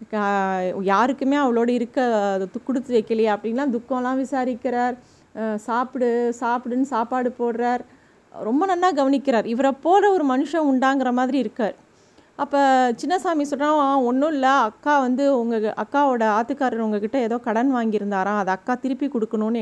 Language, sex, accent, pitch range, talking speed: Tamil, female, native, 225-275 Hz, 125 wpm